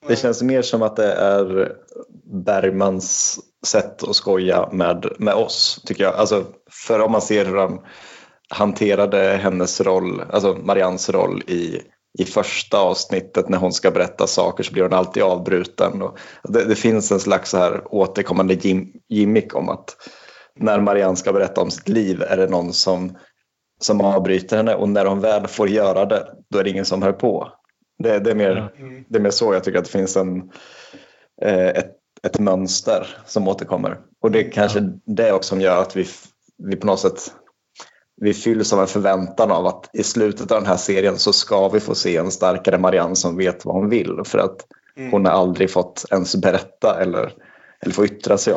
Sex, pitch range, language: male, 95-105 Hz, Swedish